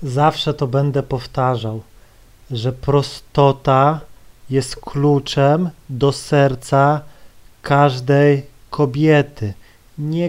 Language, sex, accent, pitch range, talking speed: Polish, male, native, 135-190 Hz, 75 wpm